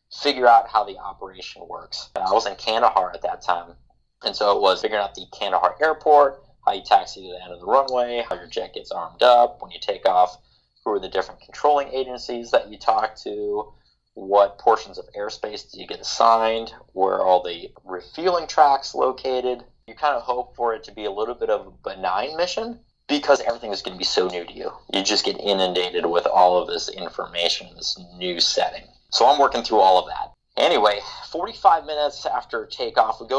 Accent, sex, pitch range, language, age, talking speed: American, male, 95-140 Hz, English, 30-49, 210 wpm